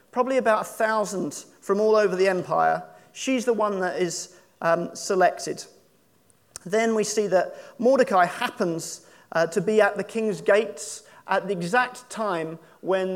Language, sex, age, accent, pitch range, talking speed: English, male, 40-59, British, 185-230 Hz, 155 wpm